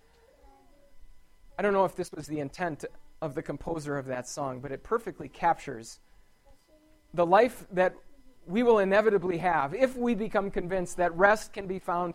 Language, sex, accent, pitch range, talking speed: English, male, American, 165-225 Hz, 170 wpm